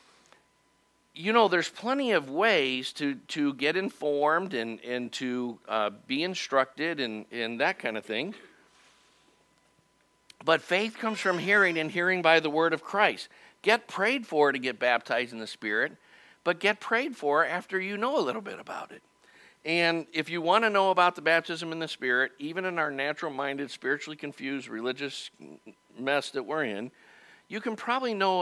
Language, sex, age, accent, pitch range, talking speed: English, male, 50-69, American, 140-185 Hz, 175 wpm